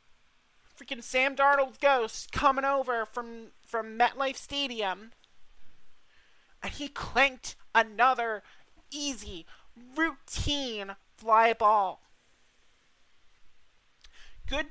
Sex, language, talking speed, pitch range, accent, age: male, English, 80 wpm, 215-255 Hz, American, 30-49